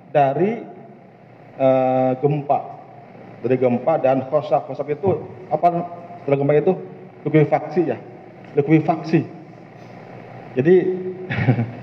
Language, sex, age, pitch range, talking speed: Malay, male, 40-59, 120-150 Hz, 85 wpm